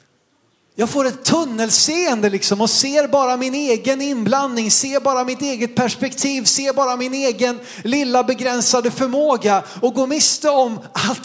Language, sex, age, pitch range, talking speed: Swedish, male, 30-49, 210-265 Hz, 150 wpm